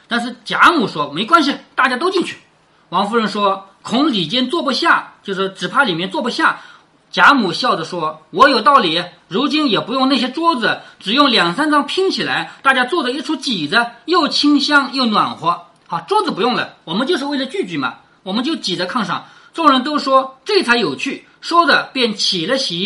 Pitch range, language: 200-305 Hz, Chinese